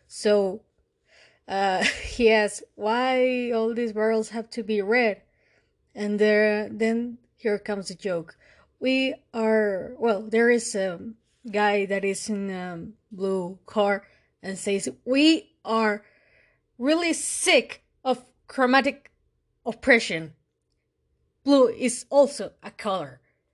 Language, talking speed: English, 115 wpm